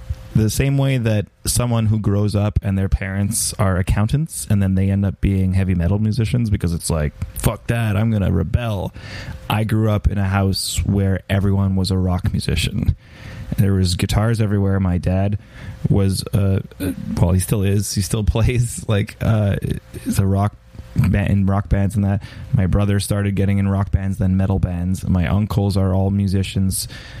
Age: 20-39